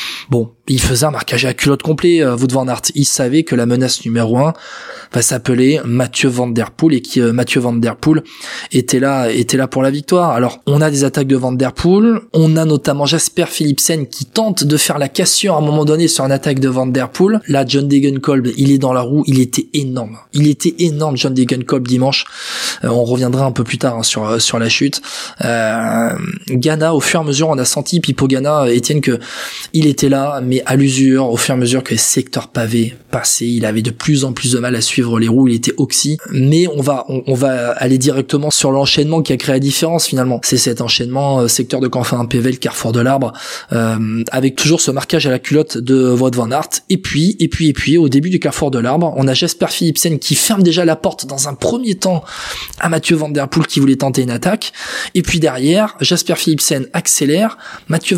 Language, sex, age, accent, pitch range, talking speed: French, male, 20-39, French, 125-160 Hz, 230 wpm